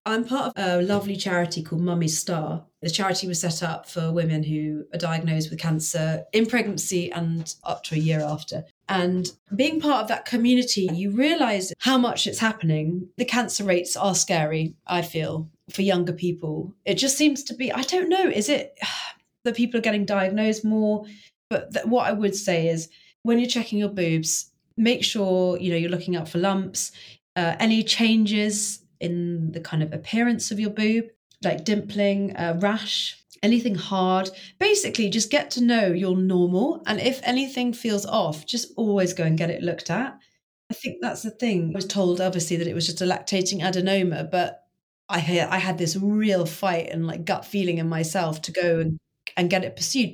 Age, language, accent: 30-49, English, British